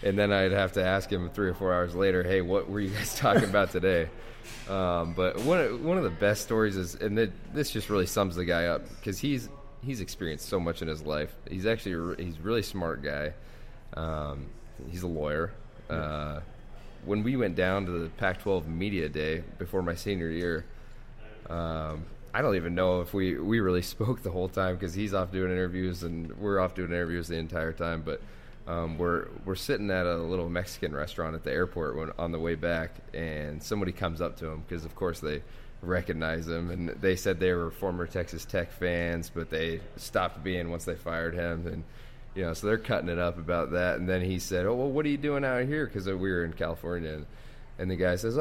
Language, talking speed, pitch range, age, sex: English, 220 wpm, 85-100 Hz, 20-39, male